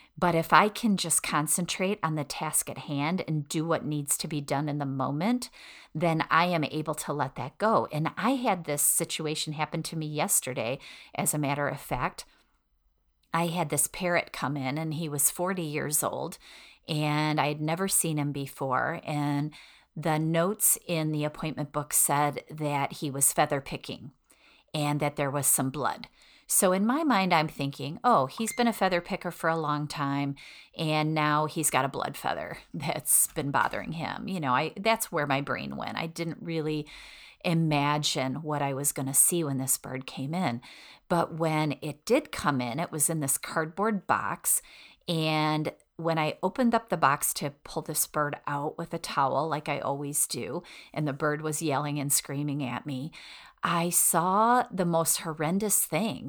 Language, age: English, 40-59